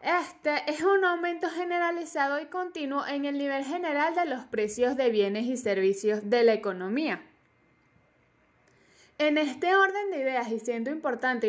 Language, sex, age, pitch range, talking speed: Spanish, female, 10-29, 235-310 Hz, 150 wpm